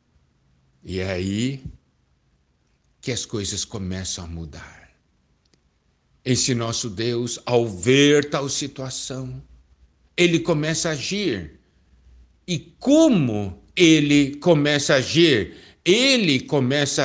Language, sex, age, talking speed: Portuguese, male, 60-79, 100 wpm